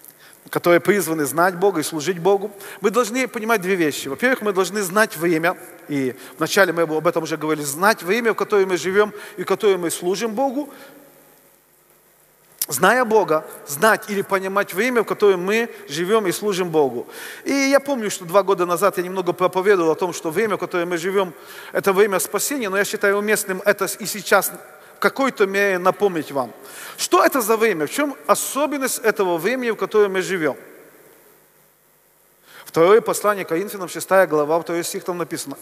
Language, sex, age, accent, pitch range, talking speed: Russian, male, 40-59, native, 180-245 Hz, 175 wpm